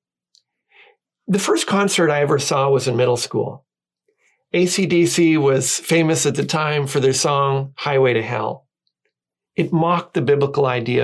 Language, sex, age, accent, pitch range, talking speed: English, male, 40-59, American, 140-190 Hz, 145 wpm